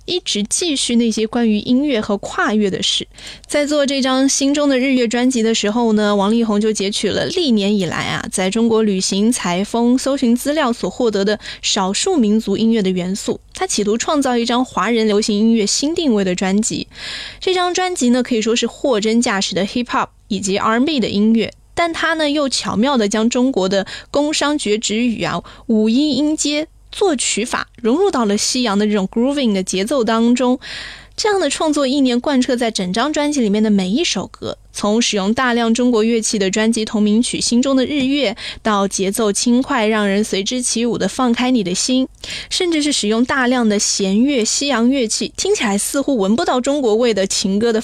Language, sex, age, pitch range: Chinese, female, 20-39, 210-265 Hz